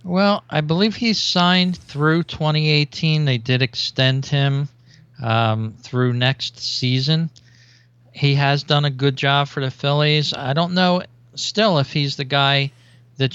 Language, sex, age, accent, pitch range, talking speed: English, male, 40-59, American, 120-150 Hz, 150 wpm